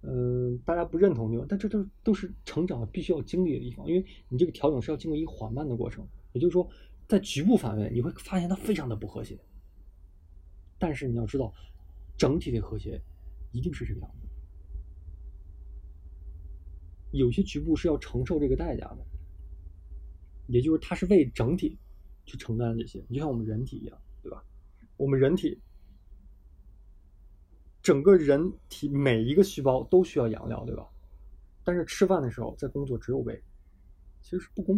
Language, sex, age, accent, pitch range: Chinese, male, 20-39, native, 95-155 Hz